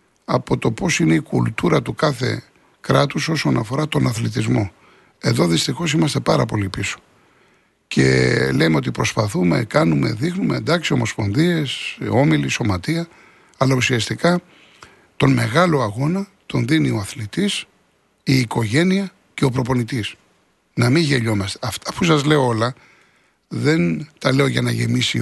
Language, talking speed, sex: Greek, 135 wpm, male